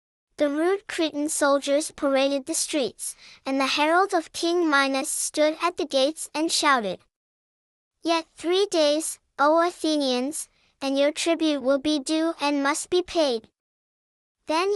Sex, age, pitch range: male, 10-29, 275-330 Hz